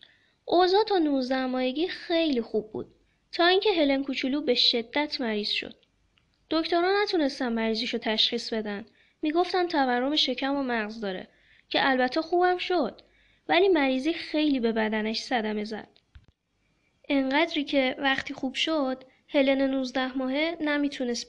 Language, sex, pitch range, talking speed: Persian, female, 240-310 Hz, 125 wpm